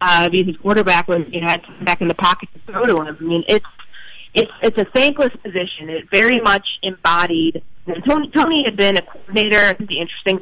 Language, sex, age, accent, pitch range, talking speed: English, female, 30-49, American, 170-205 Hz, 225 wpm